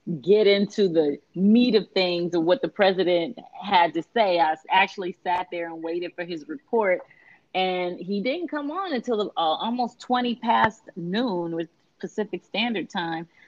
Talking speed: 170 wpm